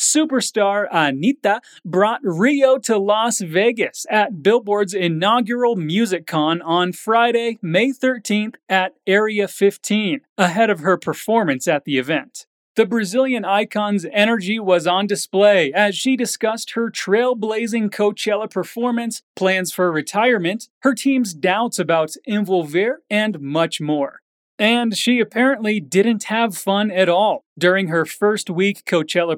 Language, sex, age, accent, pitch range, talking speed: Portuguese, male, 30-49, American, 175-220 Hz, 130 wpm